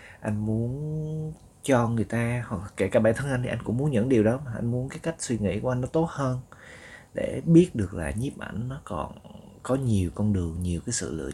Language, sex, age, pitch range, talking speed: Vietnamese, male, 20-39, 95-125 Hz, 240 wpm